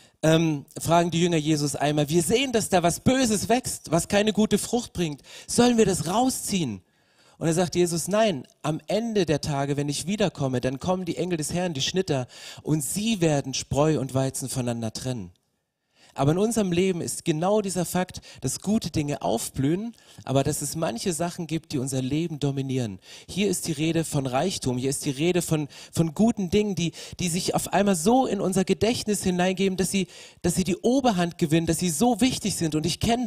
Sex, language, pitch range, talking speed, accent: male, German, 150-200 Hz, 200 wpm, German